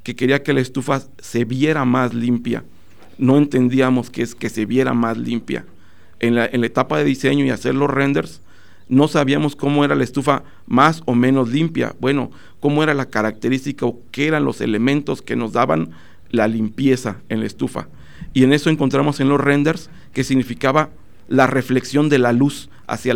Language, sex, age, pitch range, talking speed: Spanish, male, 50-69, 115-145 Hz, 185 wpm